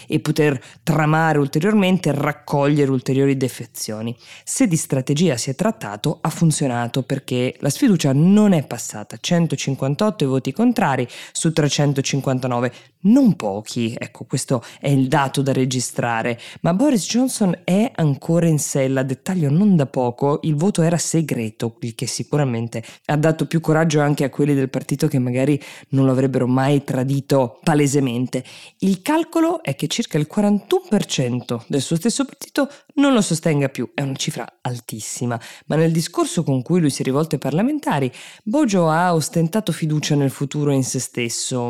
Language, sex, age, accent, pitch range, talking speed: Italian, female, 20-39, native, 125-170 Hz, 155 wpm